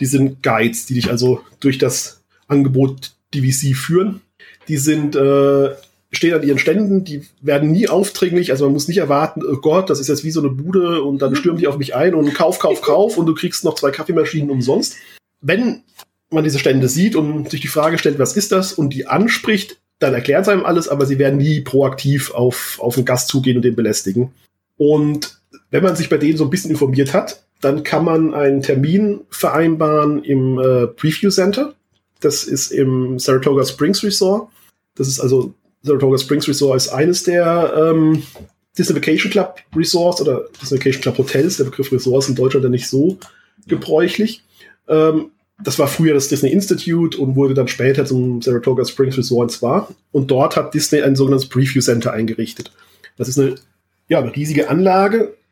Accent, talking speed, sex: German, 190 wpm, male